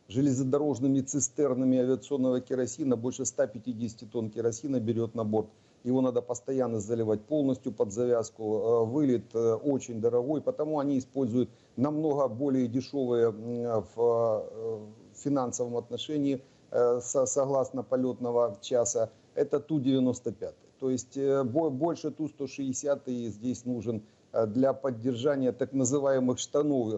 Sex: male